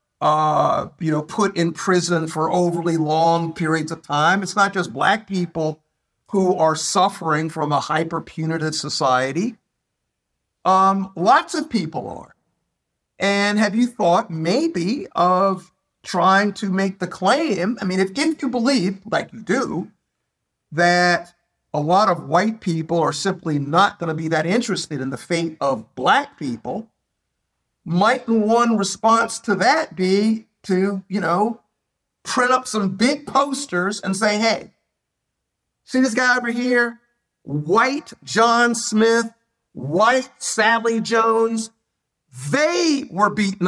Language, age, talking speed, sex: English, 50-69, 135 wpm, male